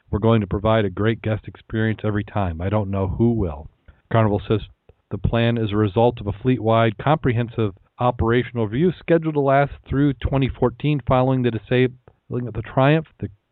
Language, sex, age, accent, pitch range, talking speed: English, male, 40-59, American, 105-125 Hz, 170 wpm